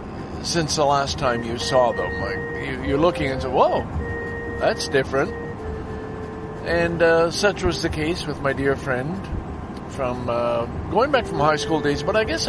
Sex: male